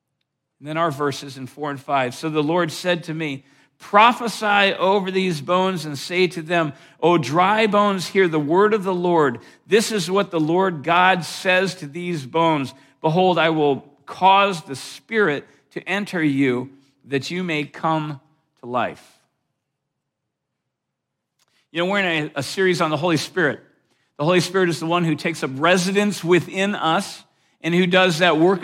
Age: 50-69